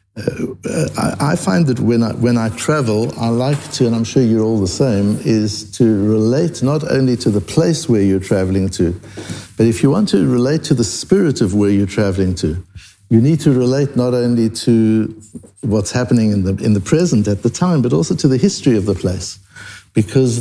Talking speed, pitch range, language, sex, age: 210 wpm, 100-125 Hz, English, male, 60-79